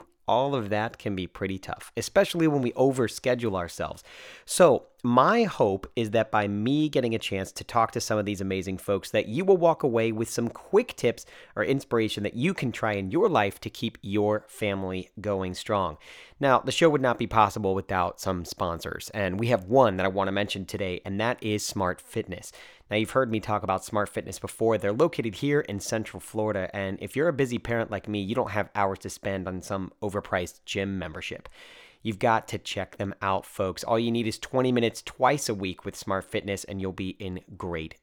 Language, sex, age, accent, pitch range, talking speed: English, male, 30-49, American, 95-125 Hz, 220 wpm